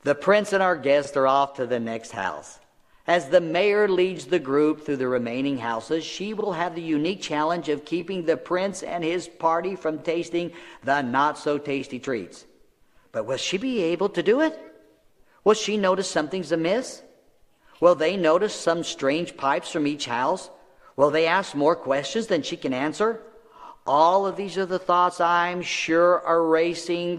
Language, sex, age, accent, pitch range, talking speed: English, male, 50-69, American, 155-215 Hz, 175 wpm